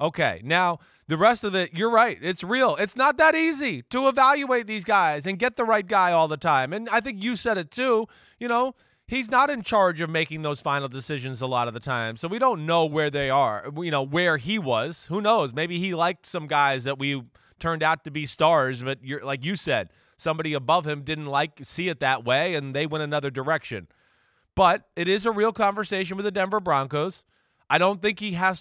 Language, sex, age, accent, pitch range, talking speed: English, male, 20-39, American, 145-185 Hz, 225 wpm